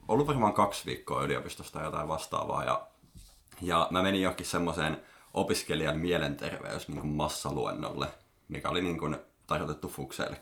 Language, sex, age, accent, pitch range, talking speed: Finnish, male, 30-49, native, 75-95 Hz, 140 wpm